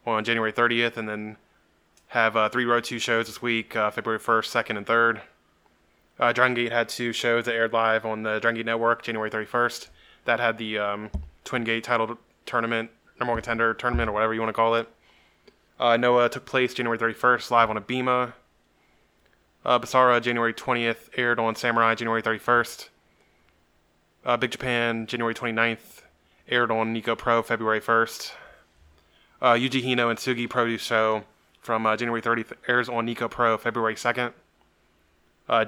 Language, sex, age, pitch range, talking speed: English, male, 20-39, 115-120 Hz, 170 wpm